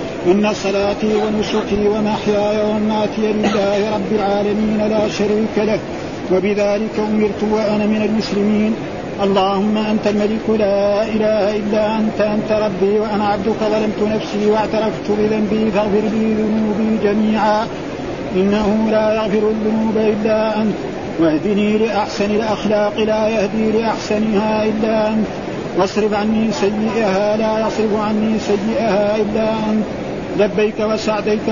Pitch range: 210-220 Hz